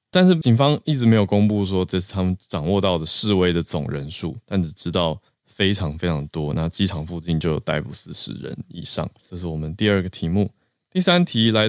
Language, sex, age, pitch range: Chinese, male, 20-39, 90-120 Hz